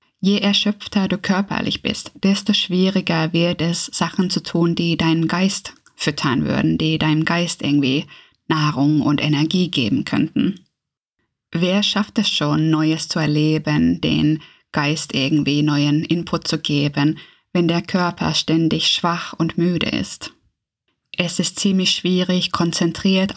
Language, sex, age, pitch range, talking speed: German, female, 20-39, 160-185 Hz, 135 wpm